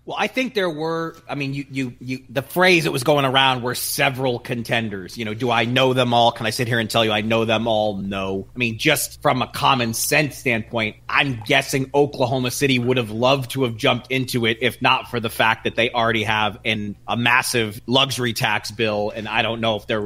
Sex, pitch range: male, 115-135 Hz